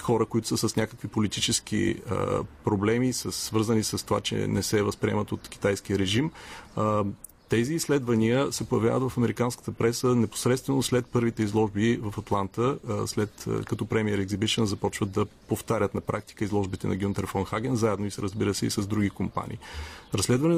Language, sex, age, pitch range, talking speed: Bulgarian, male, 30-49, 105-125 Hz, 170 wpm